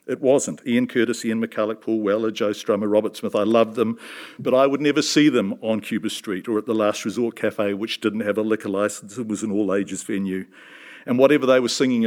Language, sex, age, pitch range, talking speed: English, male, 50-69, 110-150 Hz, 230 wpm